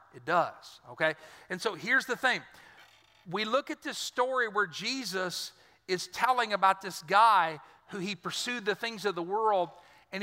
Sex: male